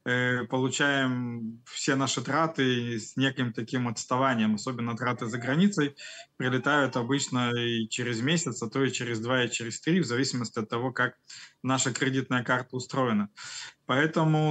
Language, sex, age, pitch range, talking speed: Russian, male, 20-39, 115-140 Hz, 145 wpm